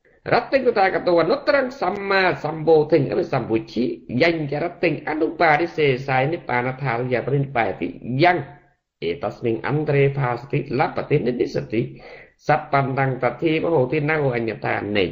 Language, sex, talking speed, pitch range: Vietnamese, male, 40 wpm, 130-175 Hz